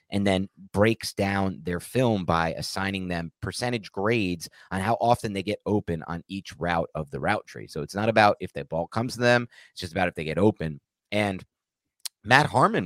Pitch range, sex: 80-105 Hz, male